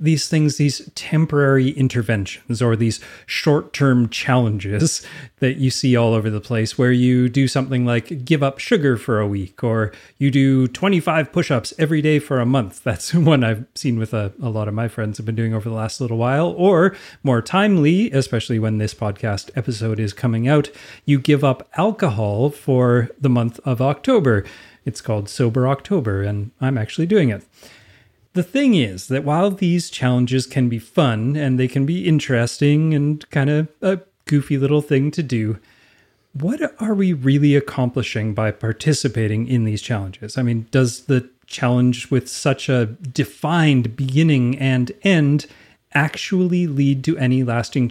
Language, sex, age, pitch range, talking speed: English, male, 30-49, 115-145 Hz, 170 wpm